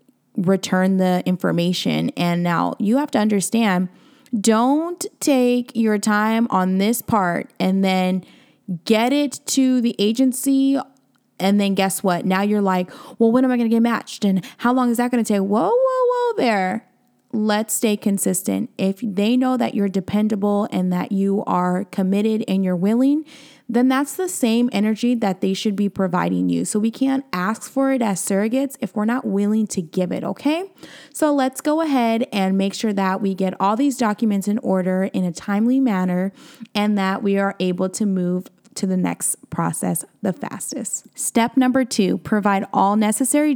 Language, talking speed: English, 180 wpm